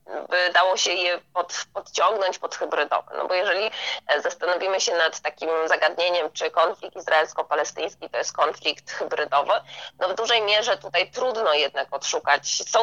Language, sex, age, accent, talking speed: Polish, female, 20-39, native, 145 wpm